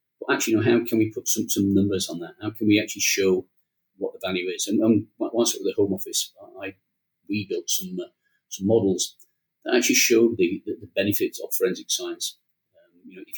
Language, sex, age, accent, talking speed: English, male, 40-59, British, 220 wpm